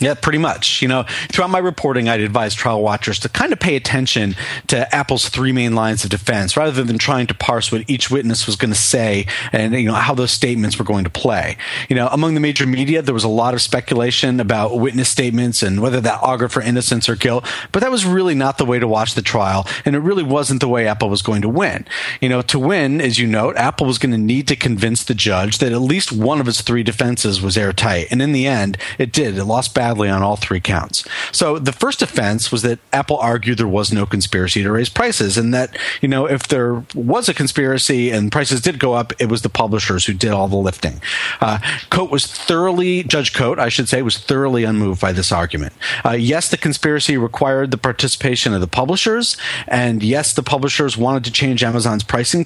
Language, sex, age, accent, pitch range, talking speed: English, male, 40-59, American, 110-140 Hz, 230 wpm